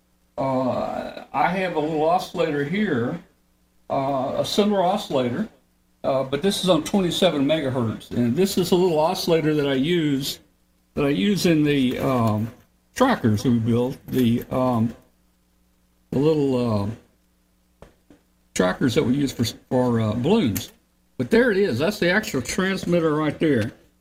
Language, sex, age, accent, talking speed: English, male, 60-79, American, 150 wpm